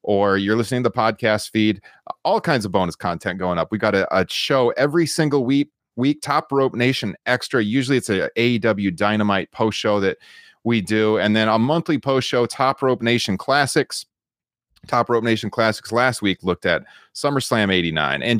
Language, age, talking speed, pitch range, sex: English, 30-49, 190 wpm, 105-130 Hz, male